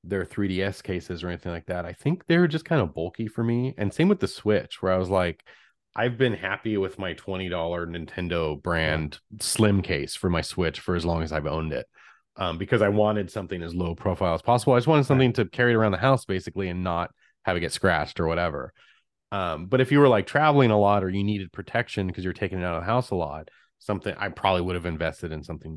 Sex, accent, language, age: male, American, English, 30-49